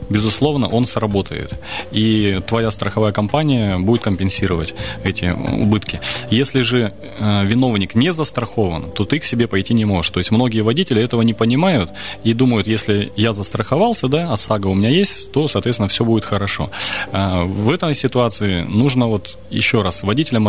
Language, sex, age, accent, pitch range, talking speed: Russian, male, 30-49, native, 95-125 Hz, 160 wpm